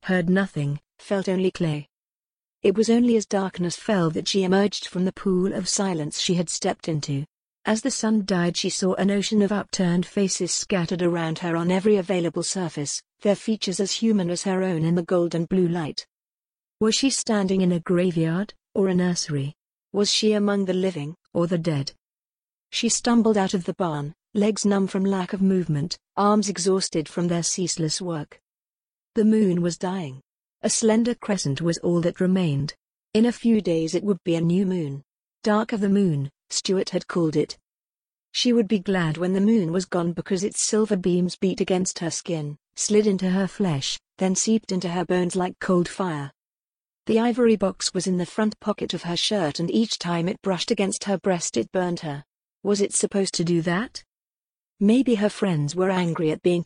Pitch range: 170-205 Hz